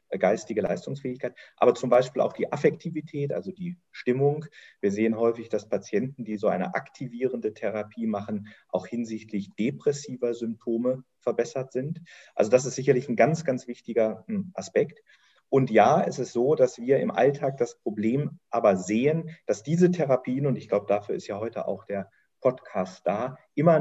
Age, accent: 40-59, German